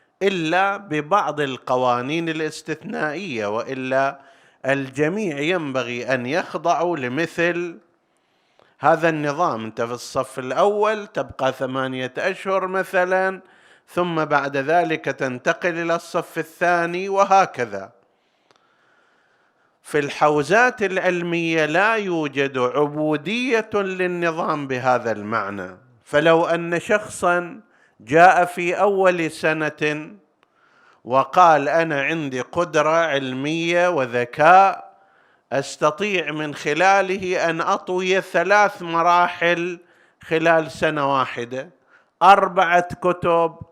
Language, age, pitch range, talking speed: Arabic, 50-69, 135-180 Hz, 85 wpm